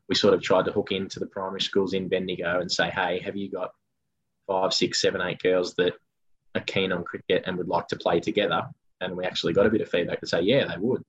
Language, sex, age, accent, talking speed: English, male, 20-39, Australian, 255 wpm